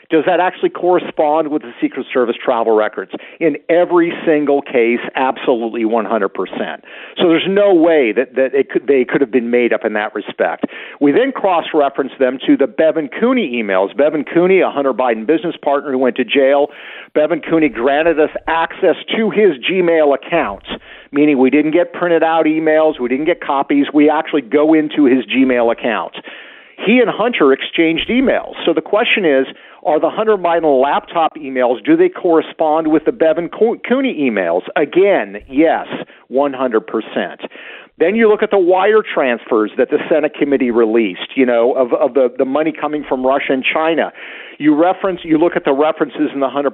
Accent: American